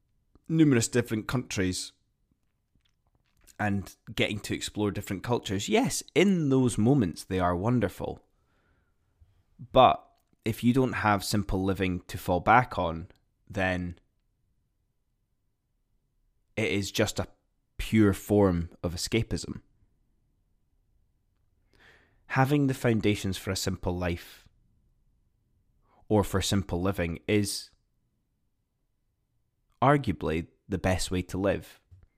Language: English